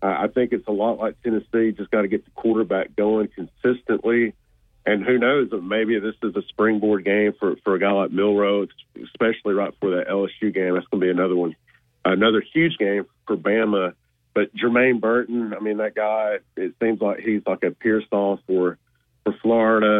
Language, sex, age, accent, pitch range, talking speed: English, male, 40-59, American, 95-110 Hz, 195 wpm